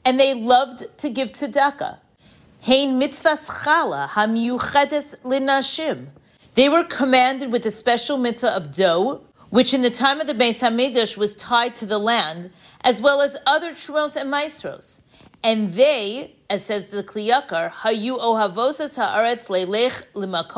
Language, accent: English, American